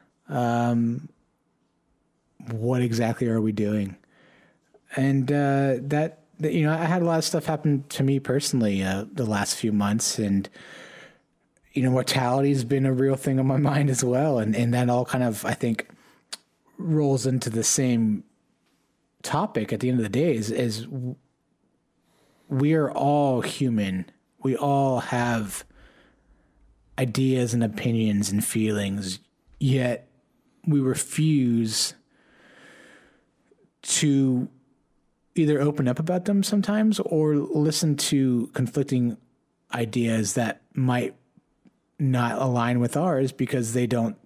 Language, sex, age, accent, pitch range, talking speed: English, male, 30-49, American, 115-145 Hz, 135 wpm